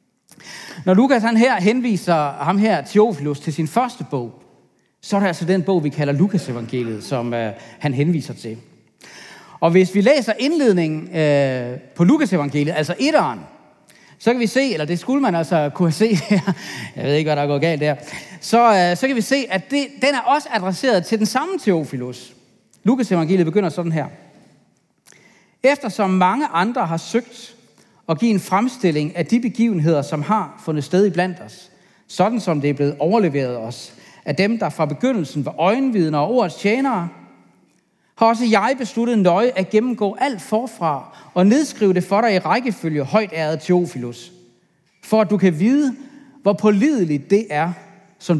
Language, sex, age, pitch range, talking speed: Danish, male, 40-59, 150-230 Hz, 175 wpm